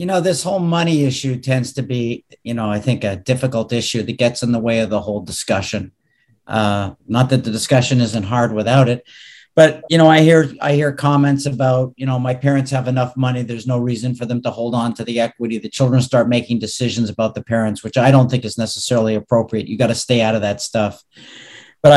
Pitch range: 120-150 Hz